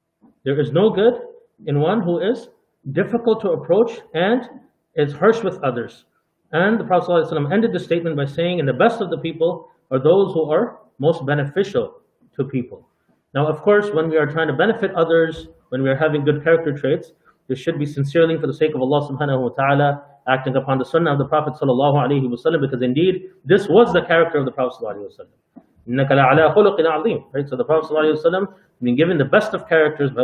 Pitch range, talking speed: 140-180 Hz, 195 wpm